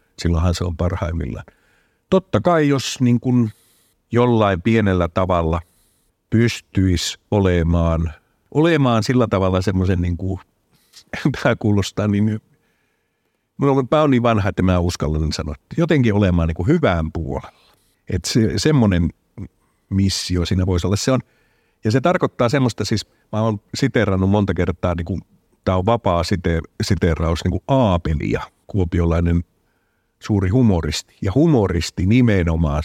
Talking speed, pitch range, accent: 125 wpm, 85-110 Hz, native